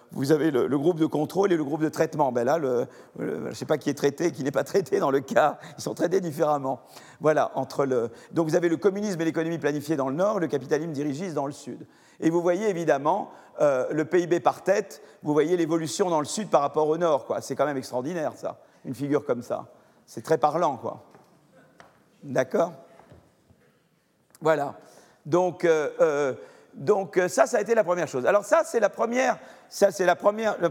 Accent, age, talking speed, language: French, 50-69, 215 wpm, French